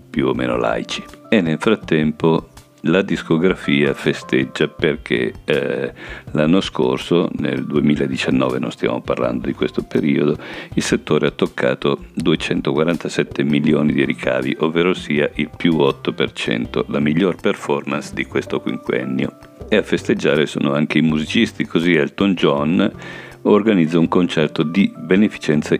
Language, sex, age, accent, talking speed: Italian, male, 50-69, native, 130 wpm